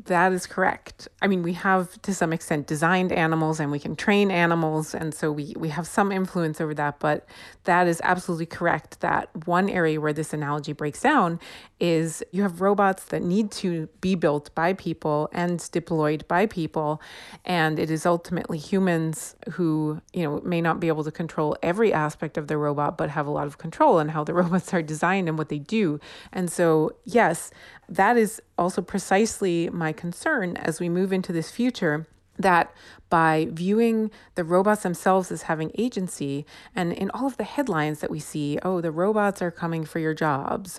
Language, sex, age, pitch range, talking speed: English, female, 30-49, 160-195 Hz, 190 wpm